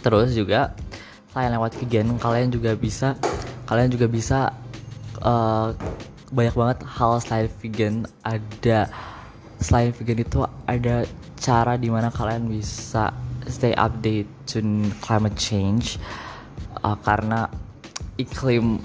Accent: native